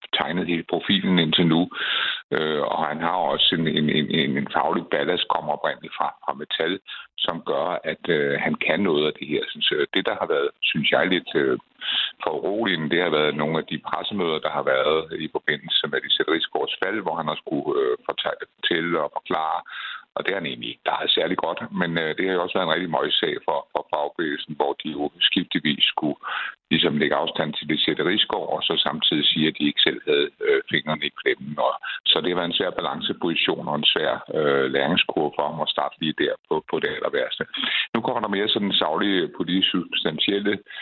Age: 60-79